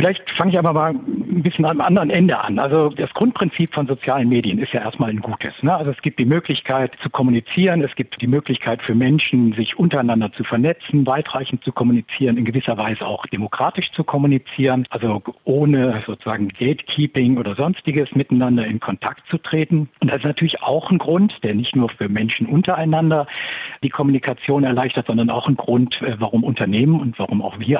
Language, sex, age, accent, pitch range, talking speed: German, male, 60-79, German, 115-150 Hz, 185 wpm